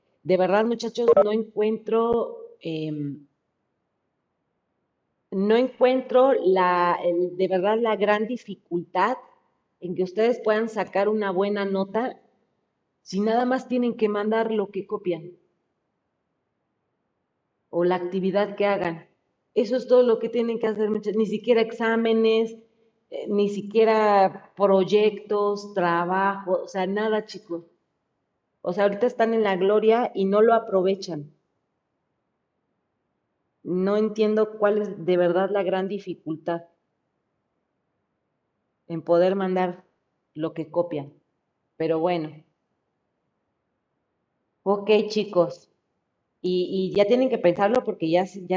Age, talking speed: 40-59, 115 wpm